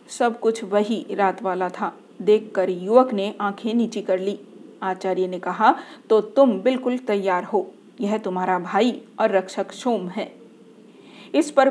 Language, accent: Hindi, native